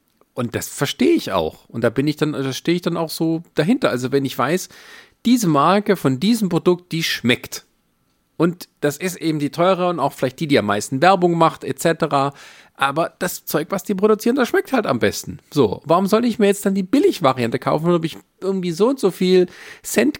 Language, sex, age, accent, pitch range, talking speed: German, male, 40-59, German, 125-185 Hz, 215 wpm